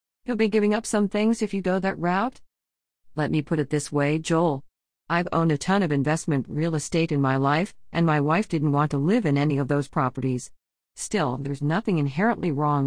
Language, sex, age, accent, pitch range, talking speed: English, female, 50-69, American, 145-190 Hz, 215 wpm